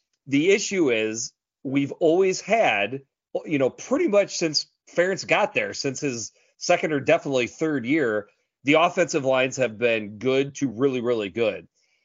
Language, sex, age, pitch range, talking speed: English, male, 30-49, 120-165 Hz, 155 wpm